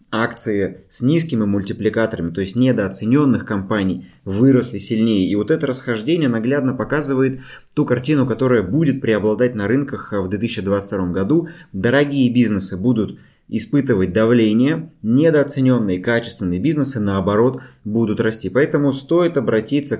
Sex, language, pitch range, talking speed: male, Russian, 100-130 Hz, 120 wpm